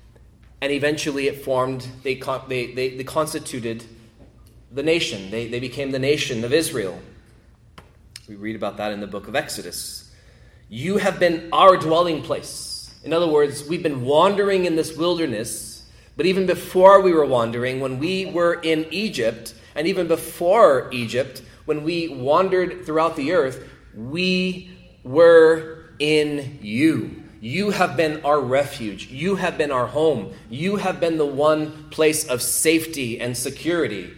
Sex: male